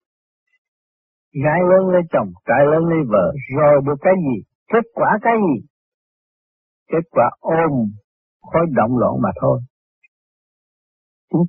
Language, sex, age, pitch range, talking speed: Vietnamese, male, 60-79, 120-170 Hz, 130 wpm